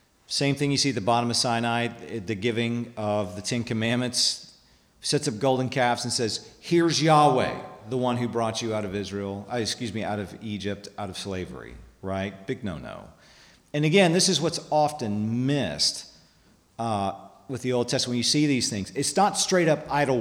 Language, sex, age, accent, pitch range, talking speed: English, male, 40-59, American, 105-140 Hz, 190 wpm